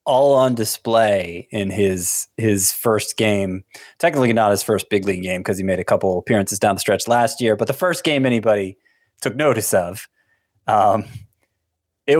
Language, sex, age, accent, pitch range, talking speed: English, male, 20-39, American, 100-125 Hz, 175 wpm